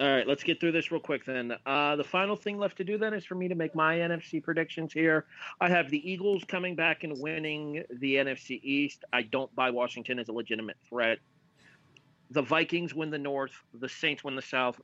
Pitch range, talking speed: 135-180 Hz, 225 wpm